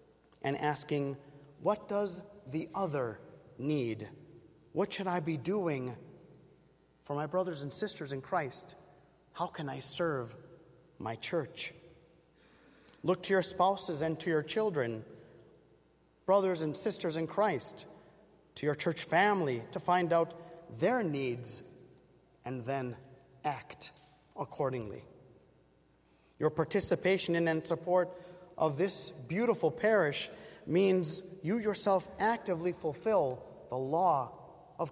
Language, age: English, 30-49